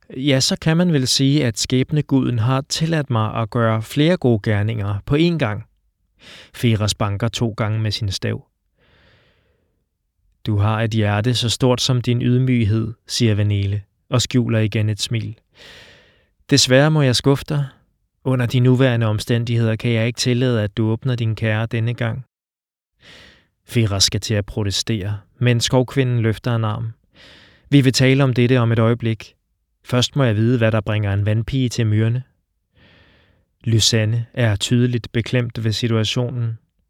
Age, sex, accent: 20-39, male, native